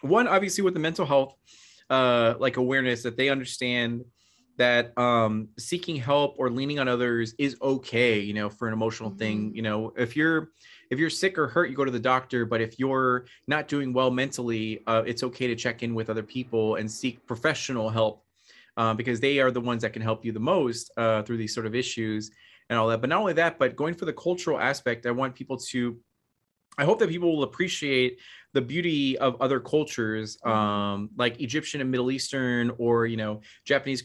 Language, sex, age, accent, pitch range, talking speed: English, male, 30-49, American, 115-140 Hz, 210 wpm